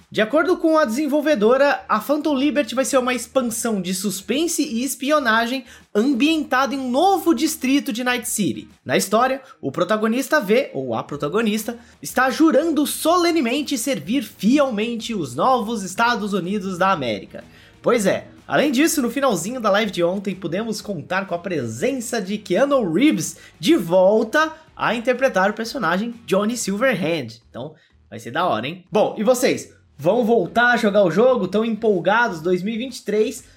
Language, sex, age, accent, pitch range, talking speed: Portuguese, male, 20-39, Brazilian, 190-265 Hz, 155 wpm